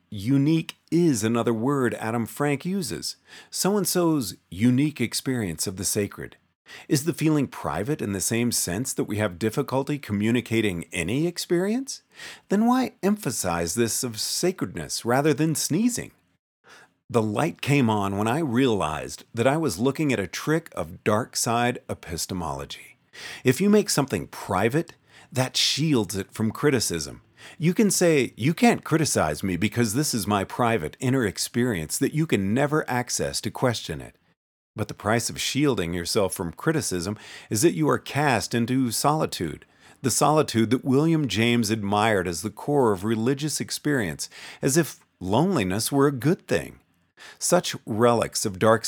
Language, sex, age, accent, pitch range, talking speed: English, male, 40-59, American, 105-150 Hz, 155 wpm